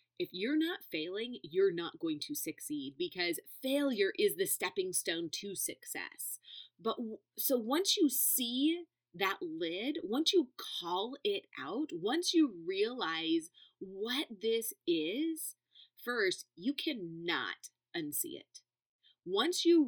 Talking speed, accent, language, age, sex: 125 wpm, American, English, 30-49, female